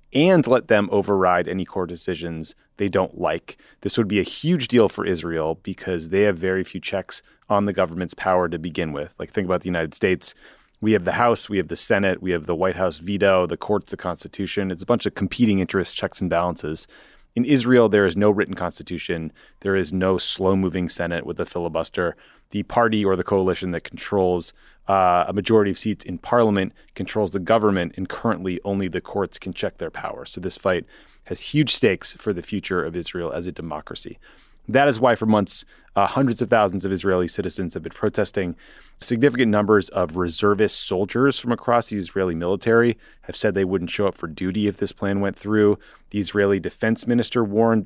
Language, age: English, 30-49